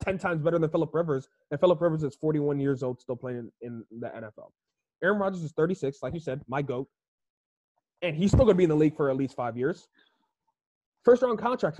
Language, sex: English, male